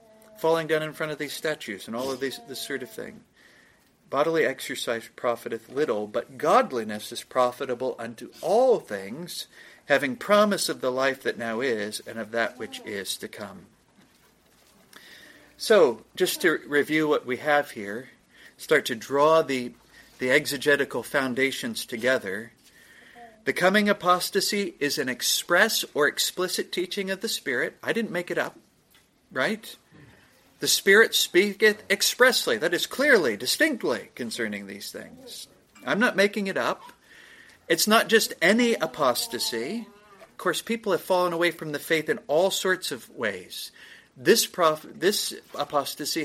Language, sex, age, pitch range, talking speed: English, male, 50-69, 145-210 Hz, 145 wpm